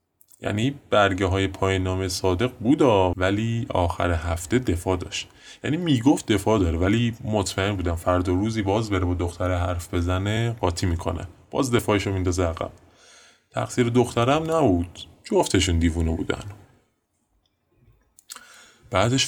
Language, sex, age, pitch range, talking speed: Persian, male, 20-39, 90-110 Hz, 120 wpm